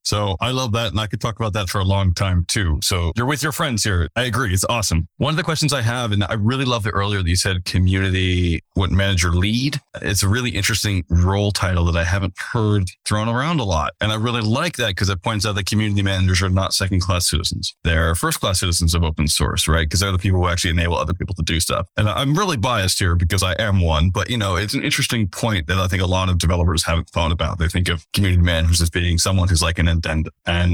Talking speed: 265 wpm